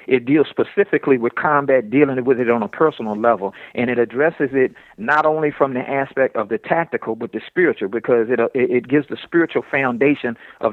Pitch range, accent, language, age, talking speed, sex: 125-155 Hz, American, English, 50-69, 195 wpm, male